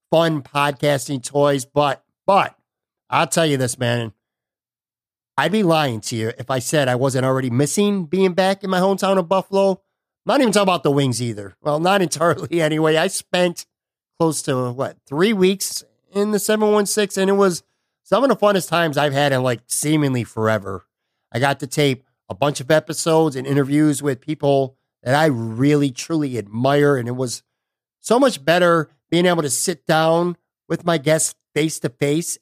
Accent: American